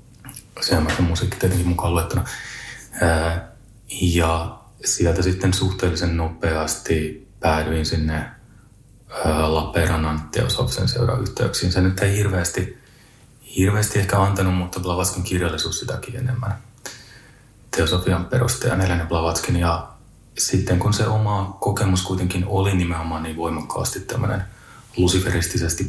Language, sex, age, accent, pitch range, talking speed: Finnish, male, 30-49, native, 85-115 Hz, 110 wpm